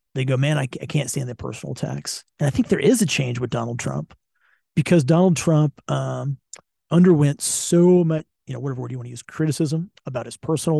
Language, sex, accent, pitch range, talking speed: English, male, American, 130-160 Hz, 215 wpm